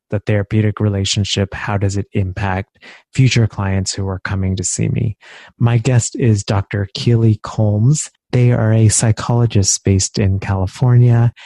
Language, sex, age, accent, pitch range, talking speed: English, male, 30-49, American, 100-115 Hz, 145 wpm